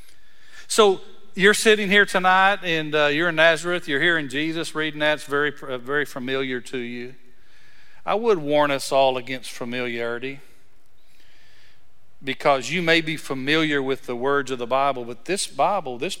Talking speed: 165 wpm